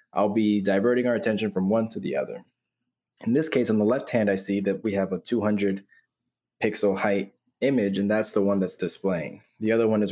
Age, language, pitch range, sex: 20-39, English, 100-125 Hz, male